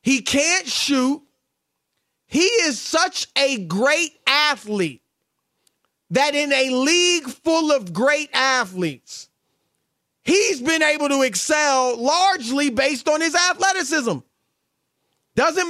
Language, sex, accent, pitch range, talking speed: English, male, American, 200-280 Hz, 105 wpm